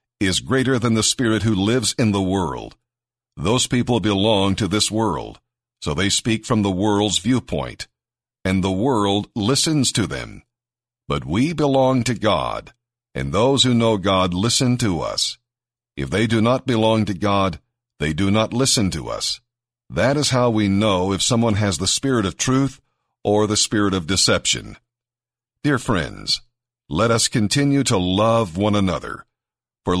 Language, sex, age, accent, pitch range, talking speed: English, male, 50-69, American, 100-125 Hz, 165 wpm